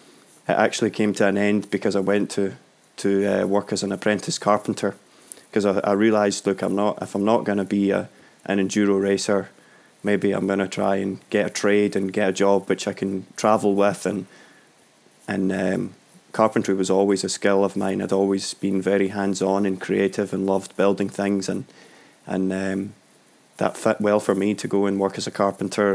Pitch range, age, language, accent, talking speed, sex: 95-105 Hz, 20-39, English, British, 205 wpm, male